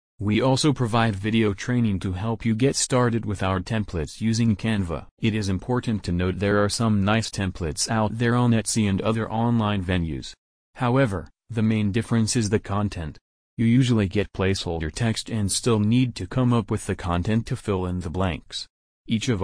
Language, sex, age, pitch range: English, male, 30-49, 95-115 Hz